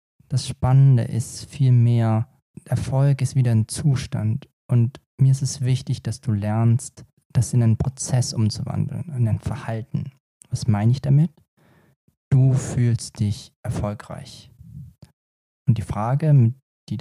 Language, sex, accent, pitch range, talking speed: German, male, German, 110-130 Hz, 130 wpm